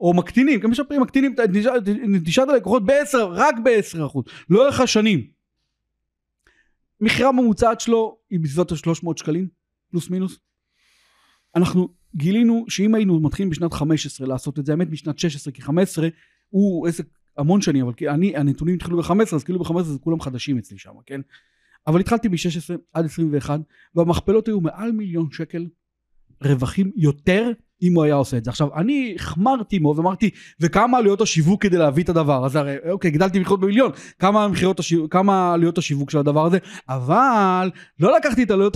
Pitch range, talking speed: 155-215 Hz, 175 wpm